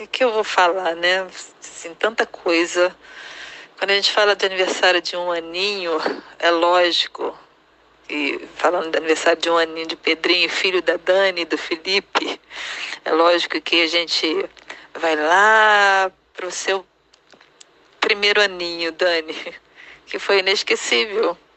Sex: female